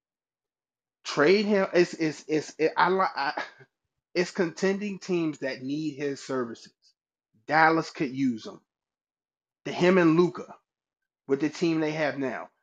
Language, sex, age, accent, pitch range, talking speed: English, male, 30-49, American, 140-220 Hz, 135 wpm